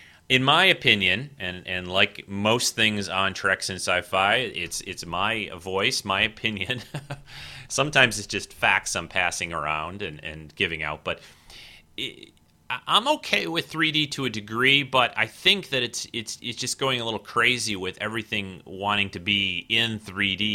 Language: English